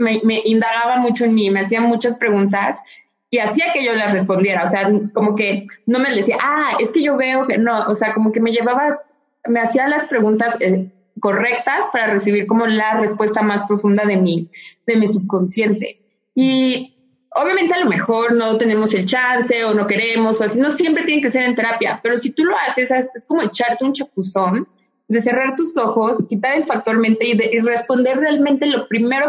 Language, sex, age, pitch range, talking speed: Spanish, female, 20-39, 215-260 Hz, 205 wpm